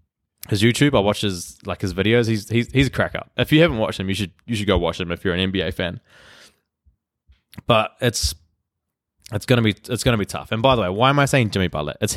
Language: English